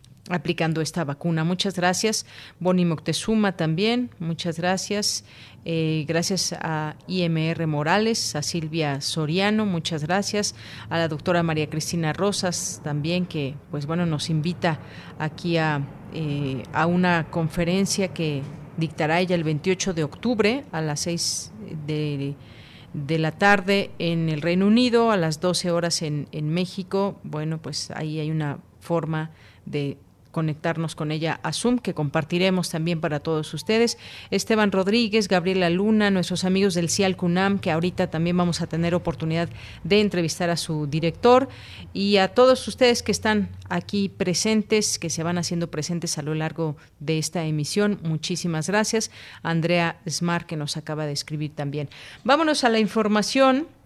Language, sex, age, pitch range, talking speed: Spanish, female, 40-59, 155-190 Hz, 150 wpm